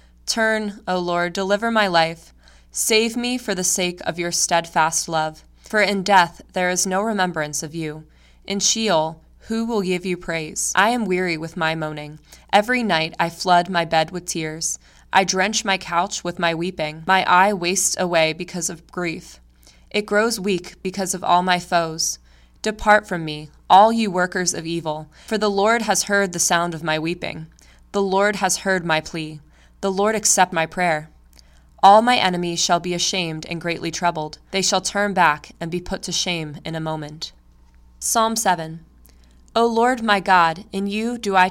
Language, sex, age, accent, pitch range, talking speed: English, female, 20-39, American, 160-200 Hz, 185 wpm